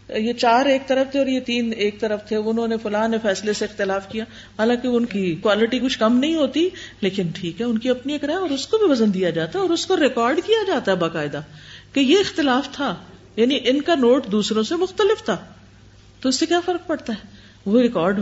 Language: Urdu